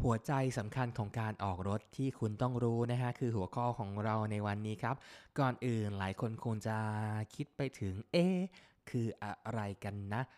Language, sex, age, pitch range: Thai, male, 20-39, 95-125 Hz